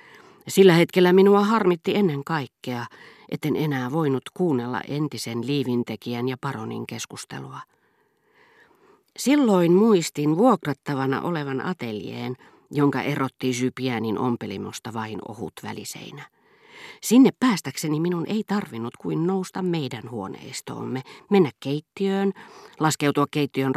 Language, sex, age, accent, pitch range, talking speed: Finnish, female, 40-59, native, 125-170 Hz, 100 wpm